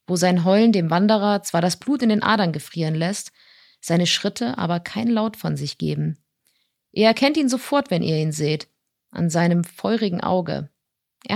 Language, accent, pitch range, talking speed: German, German, 180-230 Hz, 180 wpm